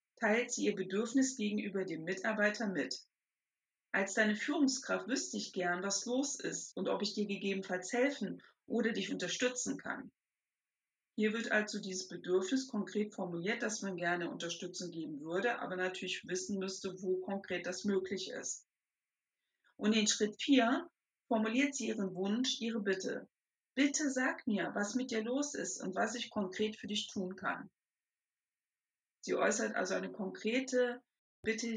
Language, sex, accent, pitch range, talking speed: German, female, German, 195-245 Hz, 155 wpm